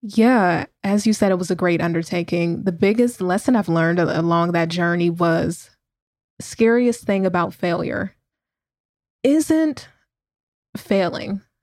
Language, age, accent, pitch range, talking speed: English, 20-39, American, 170-195 Hz, 130 wpm